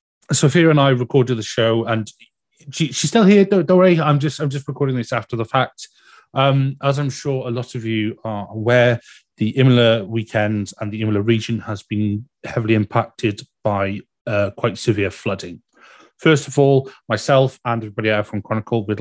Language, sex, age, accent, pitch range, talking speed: English, male, 30-49, British, 105-125 Hz, 180 wpm